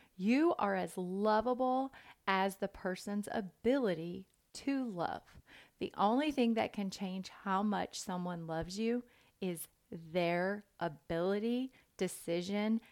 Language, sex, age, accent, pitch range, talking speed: English, female, 30-49, American, 185-235 Hz, 115 wpm